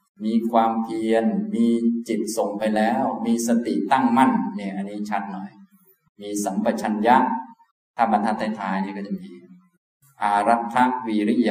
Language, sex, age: Thai, male, 20-39